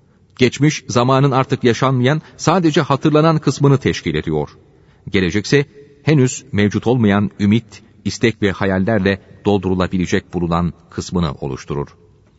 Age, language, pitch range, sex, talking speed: 40-59, Turkish, 100-140 Hz, male, 100 wpm